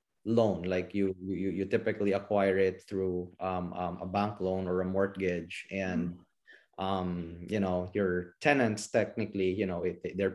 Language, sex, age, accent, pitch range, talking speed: English, male, 20-39, Filipino, 95-110 Hz, 160 wpm